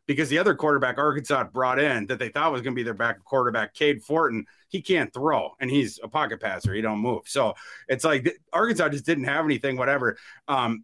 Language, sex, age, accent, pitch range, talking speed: English, male, 30-49, American, 120-145 Hz, 220 wpm